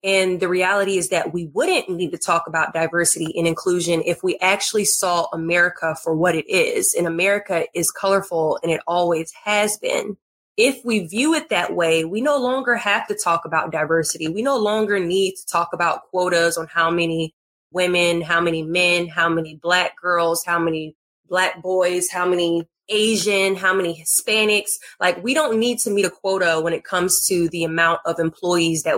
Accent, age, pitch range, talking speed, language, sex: American, 20-39, 165-200 Hz, 190 wpm, English, female